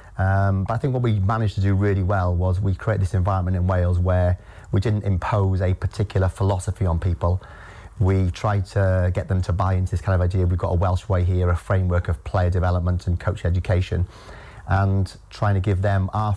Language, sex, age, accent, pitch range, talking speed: English, male, 30-49, British, 90-100 Hz, 215 wpm